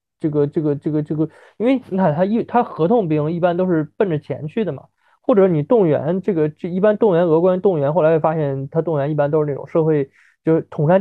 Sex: male